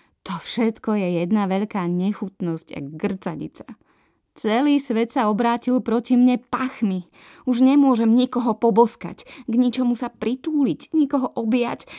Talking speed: 125 wpm